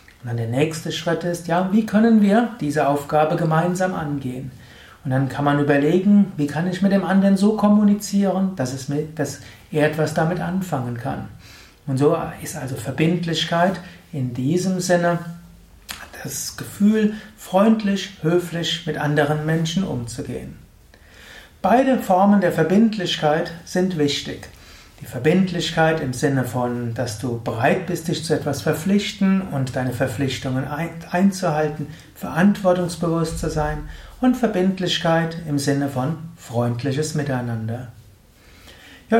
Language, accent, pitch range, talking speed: German, German, 140-180 Hz, 130 wpm